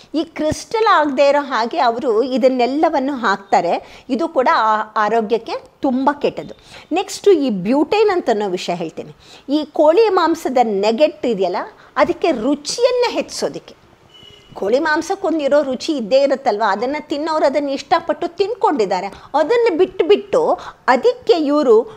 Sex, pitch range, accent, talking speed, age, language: female, 215-305 Hz, native, 125 wpm, 50-69, Kannada